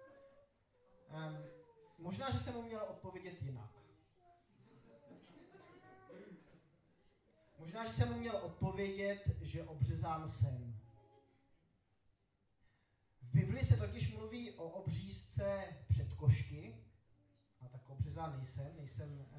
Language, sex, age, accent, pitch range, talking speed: Czech, male, 30-49, native, 110-160 Hz, 95 wpm